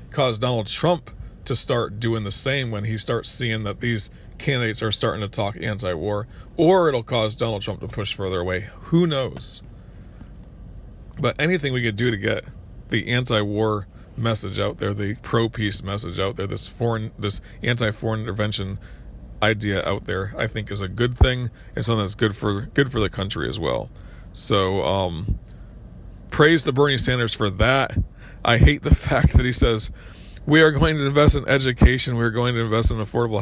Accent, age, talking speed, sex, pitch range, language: American, 40-59, 190 wpm, male, 105-120 Hz, English